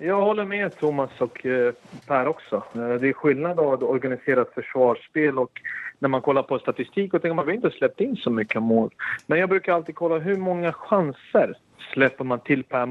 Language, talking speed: Swedish, 190 wpm